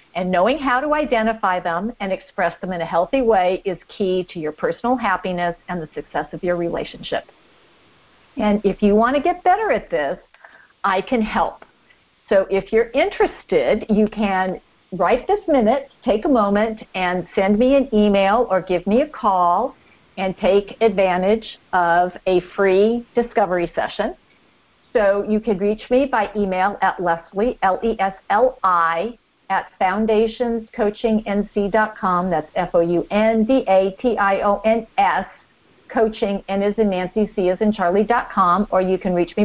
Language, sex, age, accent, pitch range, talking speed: English, female, 50-69, American, 180-230 Hz, 160 wpm